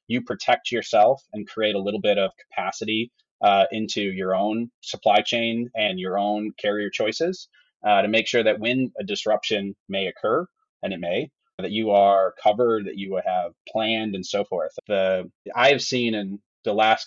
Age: 30-49